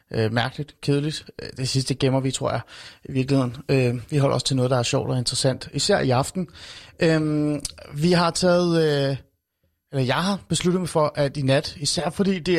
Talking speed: 200 wpm